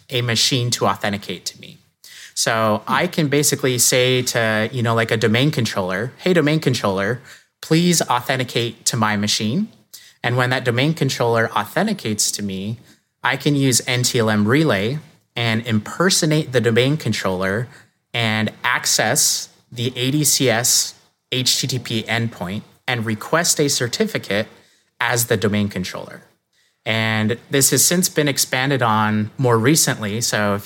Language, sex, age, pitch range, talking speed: English, male, 30-49, 105-135 Hz, 135 wpm